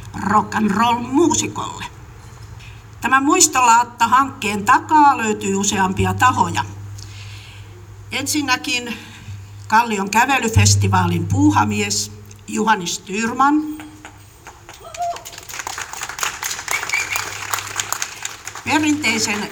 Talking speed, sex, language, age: 50 wpm, female, Finnish, 50-69